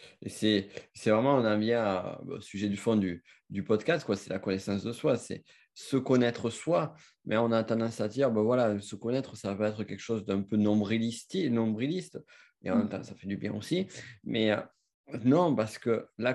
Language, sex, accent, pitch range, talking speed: French, male, French, 105-135 Hz, 215 wpm